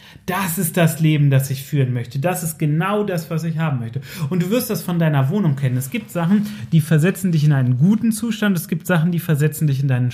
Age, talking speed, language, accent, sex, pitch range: 30-49, 250 wpm, German, German, male, 135-195 Hz